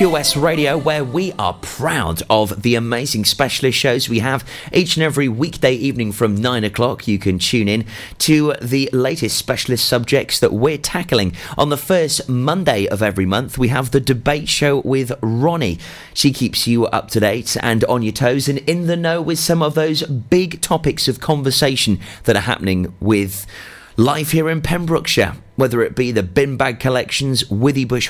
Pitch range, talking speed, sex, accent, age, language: 110-140 Hz, 185 wpm, male, British, 30-49, English